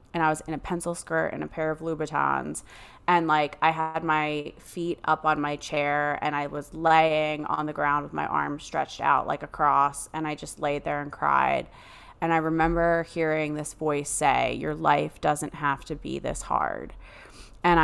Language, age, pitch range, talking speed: English, 20-39, 150-170 Hz, 200 wpm